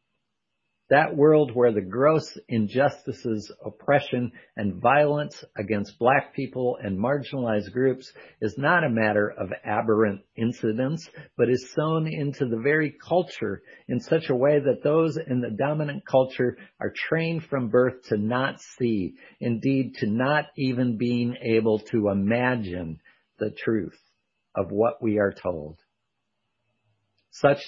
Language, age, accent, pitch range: English, 50-69, American, 105-135 Hz